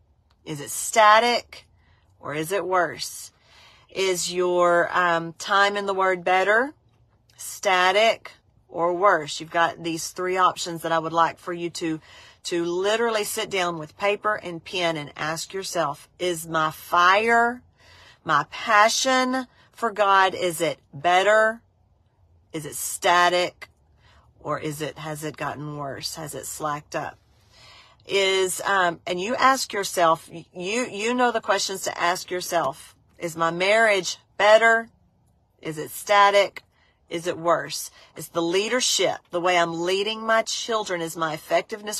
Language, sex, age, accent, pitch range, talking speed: English, female, 40-59, American, 165-205 Hz, 145 wpm